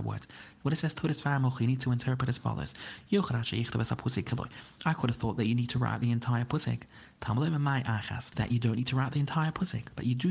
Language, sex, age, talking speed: English, male, 30-49, 205 wpm